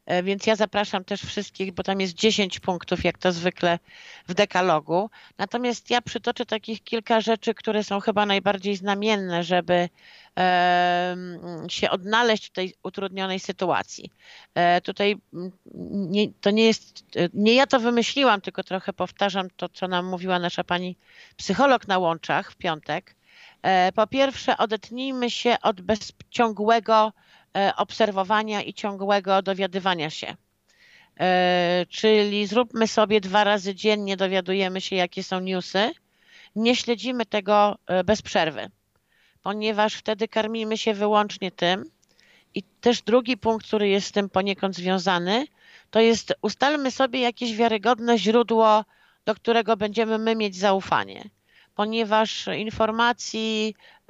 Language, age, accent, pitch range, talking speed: Polish, 50-69, native, 185-220 Hz, 125 wpm